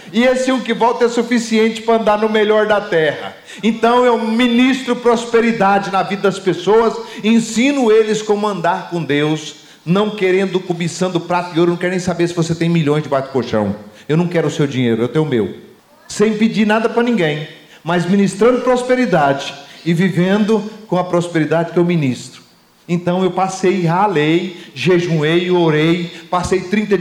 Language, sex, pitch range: Portuguese, male, 165-215 Hz